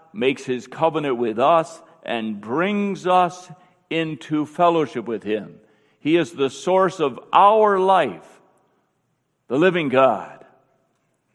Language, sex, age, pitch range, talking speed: English, male, 50-69, 125-165 Hz, 115 wpm